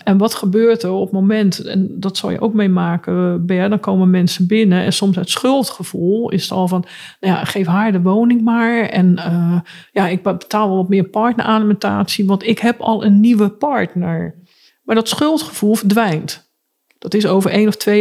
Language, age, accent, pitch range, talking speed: Dutch, 40-59, Dutch, 185-220 Hz, 195 wpm